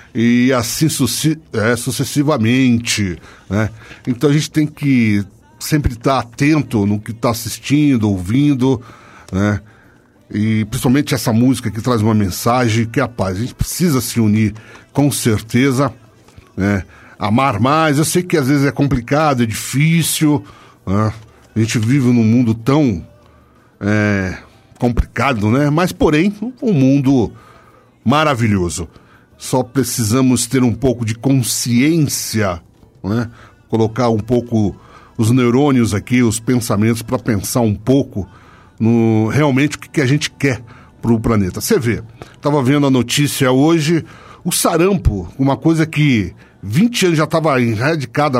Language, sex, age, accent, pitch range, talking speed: English, male, 60-79, Brazilian, 110-145 Hz, 135 wpm